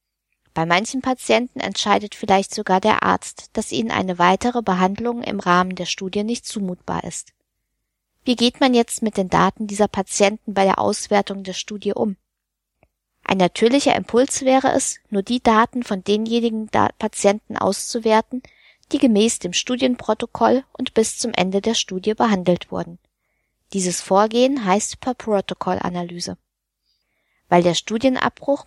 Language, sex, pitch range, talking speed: German, female, 185-240 Hz, 140 wpm